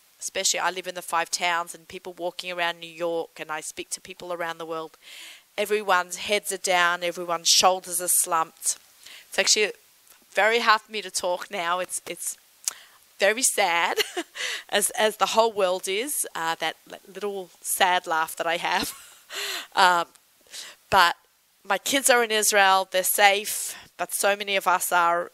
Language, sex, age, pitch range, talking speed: English, female, 30-49, 170-210 Hz, 170 wpm